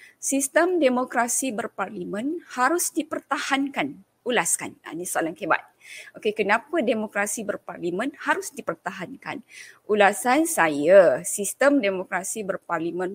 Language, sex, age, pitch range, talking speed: Malay, female, 20-39, 195-300 Hz, 90 wpm